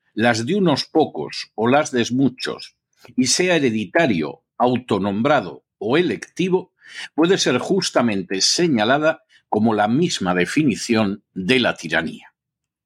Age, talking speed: 50-69, 115 wpm